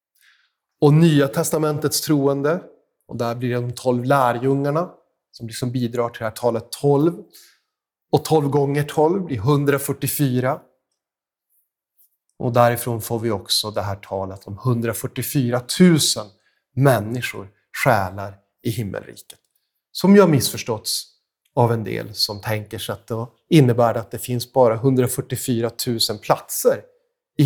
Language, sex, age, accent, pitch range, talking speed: Swedish, male, 30-49, native, 115-145 Hz, 135 wpm